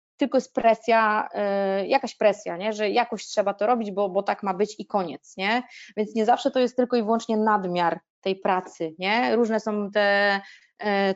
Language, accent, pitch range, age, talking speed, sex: Polish, native, 200-245 Hz, 20-39, 195 wpm, female